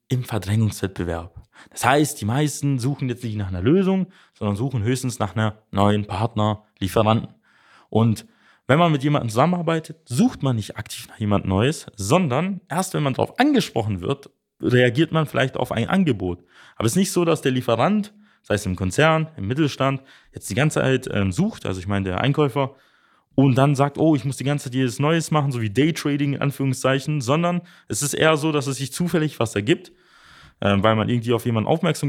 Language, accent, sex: German, German, male